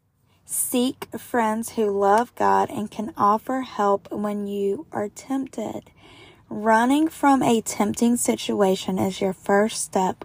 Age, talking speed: 10-29, 130 wpm